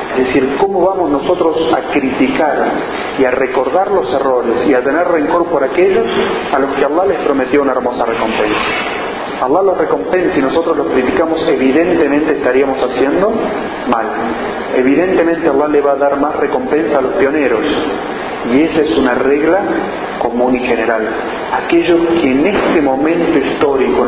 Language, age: Spanish, 40-59